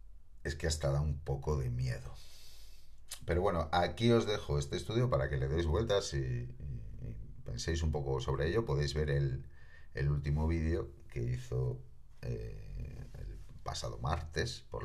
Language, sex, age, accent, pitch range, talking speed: Spanish, male, 40-59, Spanish, 70-90 Hz, 160 wpm